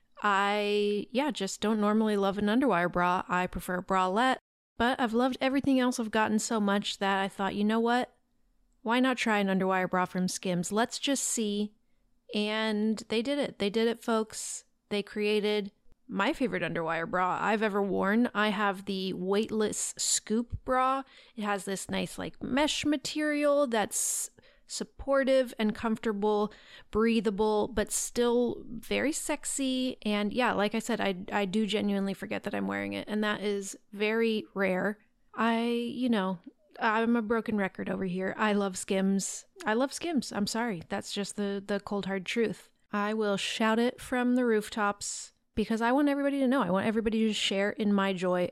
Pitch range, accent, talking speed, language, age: 200-240 Hz, American, 175 wpm, English, 30-49